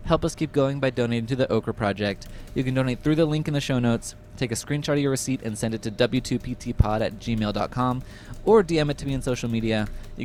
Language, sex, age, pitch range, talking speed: English, male, 20-39, 105-145 Hz, 245 wpm